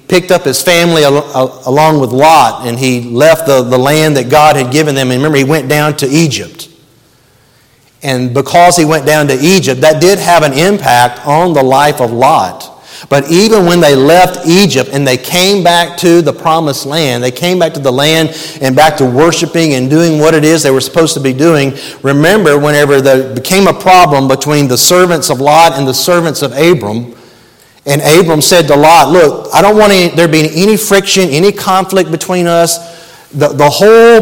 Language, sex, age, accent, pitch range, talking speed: English, male, 40-59, American, 145-190 Hz, 200 wpm